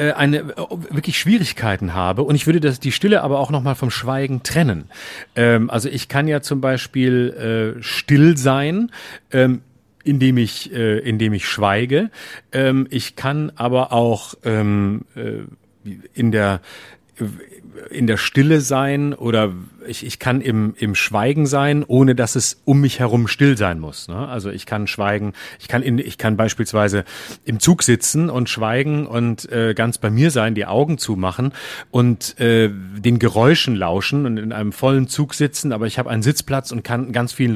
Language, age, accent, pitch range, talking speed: German, 40-59, German, 110-135 Hz, 165 wpm